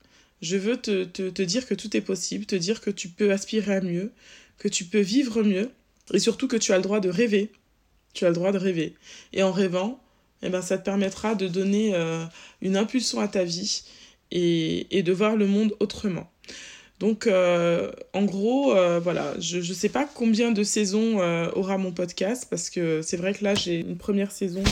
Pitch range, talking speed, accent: 180-215 Hz, 215 wpm, French